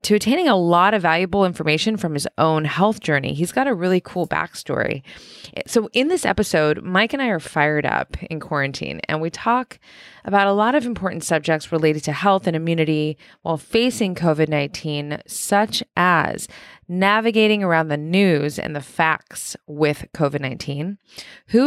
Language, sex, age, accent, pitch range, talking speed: English, female, 20-39, American, 150-200 Hz, 170 wpm